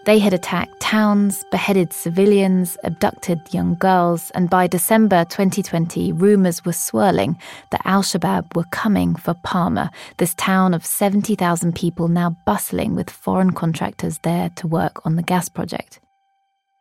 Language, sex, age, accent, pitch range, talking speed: English, female, 20-39, British, 175-205 Hz, 140 wpm